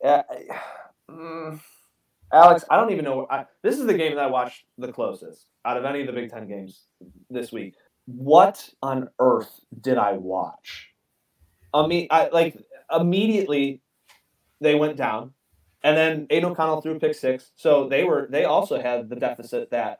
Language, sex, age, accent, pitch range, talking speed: English, male, 30-49, American, 120-170 Hz, 170 wpm